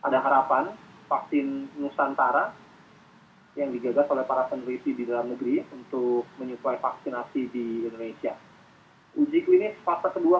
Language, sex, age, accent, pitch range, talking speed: Indonesian, male, 20-39, native, 130-215 Hz, 120 wpm